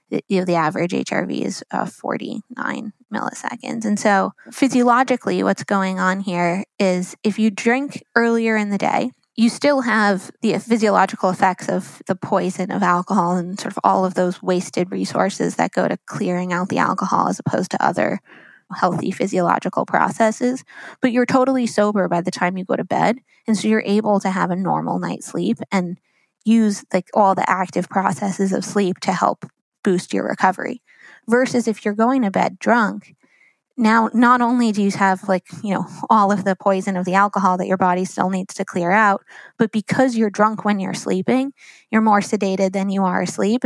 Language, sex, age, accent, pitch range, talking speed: English, female, 20-39, American, 185-220 Hz, 190 wpm